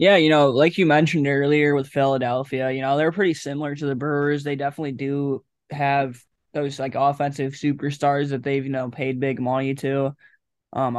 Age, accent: 10-29, American